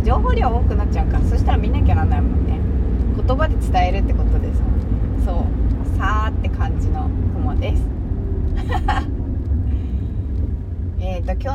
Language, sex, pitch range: Japanese, female, 75-90 Hz